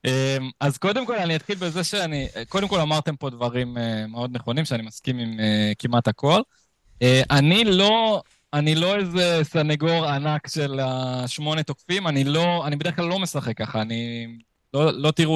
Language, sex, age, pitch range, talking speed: Hebrew, male, 20-39, 125-170 Hz, 160 wpm